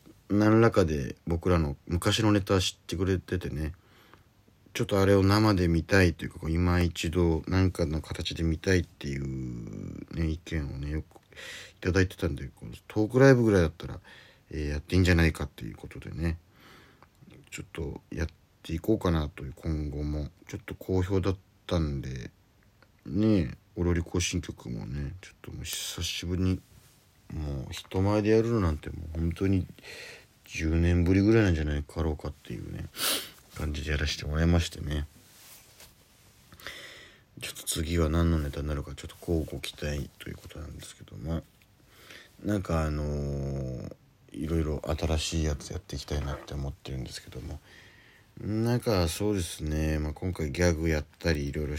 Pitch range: 75-95 Hz